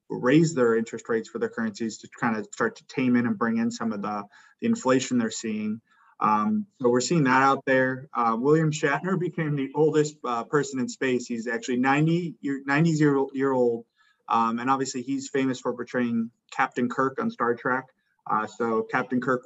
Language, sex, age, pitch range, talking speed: English, male, 20-39, 115-140 Hz, 190 wpm